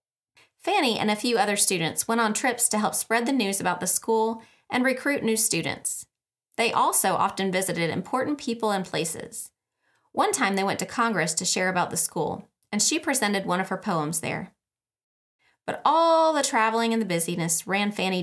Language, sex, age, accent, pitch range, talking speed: English, female, 30-49, American, 185-235 Hz, 190 wpm